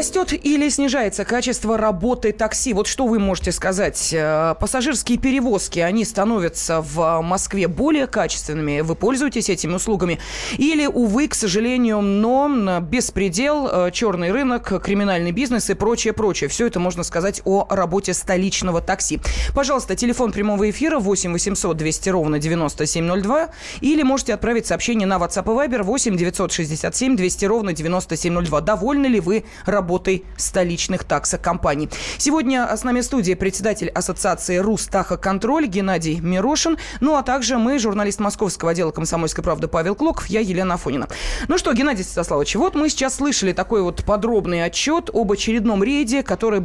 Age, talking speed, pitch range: 20-39, 145 wpm, 180-245 Hz